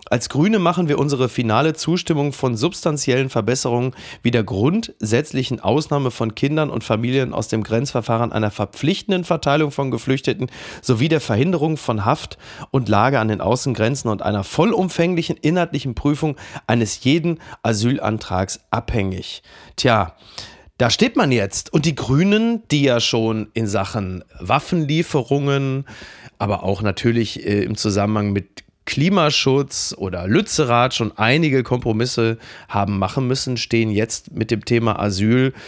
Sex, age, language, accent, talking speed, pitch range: male, 40-59, German, German, 135 wpm, 105-140 Hz